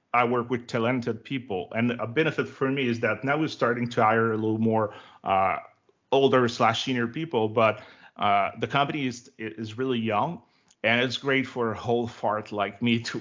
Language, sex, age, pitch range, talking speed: English, male, 30-49, 110-125 Hz, 195 wpm